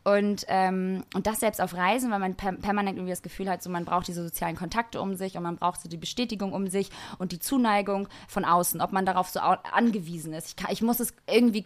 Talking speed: 240 wpm